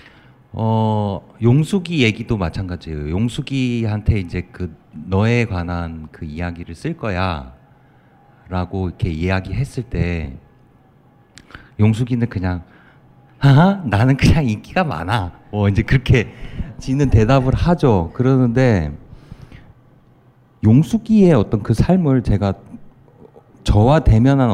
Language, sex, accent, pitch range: Korean, male, native, 95-130 Hz